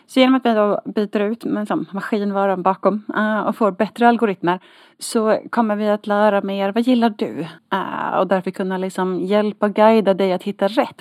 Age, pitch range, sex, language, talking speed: 30-49, 205-265 Hz, female, Swedish, 190 wpm